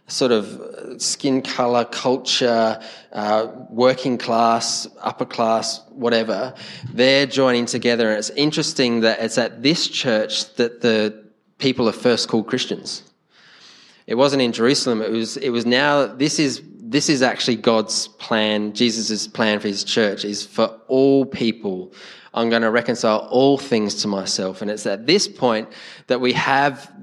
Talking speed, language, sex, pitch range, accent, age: 155 wpm, English, male, 115-140 Hz, Australian, 20-39